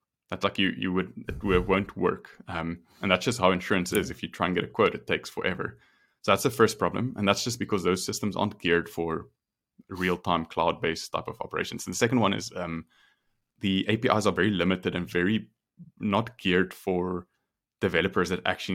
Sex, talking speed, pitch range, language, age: male, 205 wpm, 85-100 Hz, English, 20-39